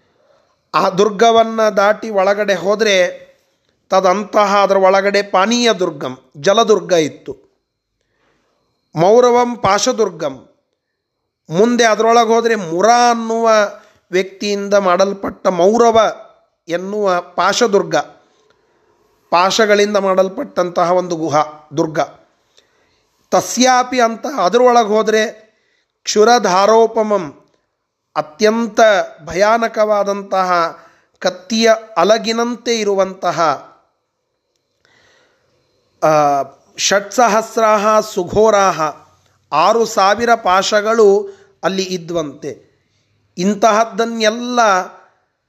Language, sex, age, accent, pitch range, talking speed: Kannada, male, 40-59, native, 180-225 Hz, 60 wpm